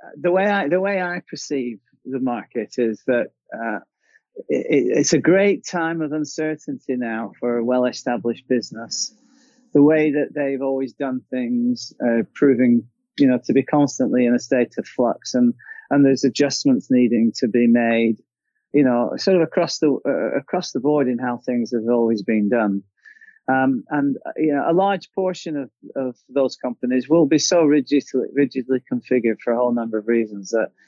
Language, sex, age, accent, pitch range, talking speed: English, male, 30-49, British, 115-150 Hz, 185 wpm